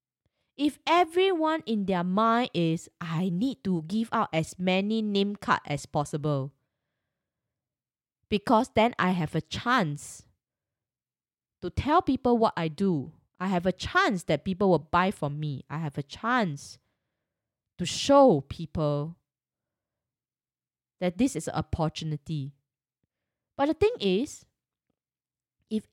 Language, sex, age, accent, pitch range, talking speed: English, female, 20-39, Malaysian, 155-245 Hz, 130 wpm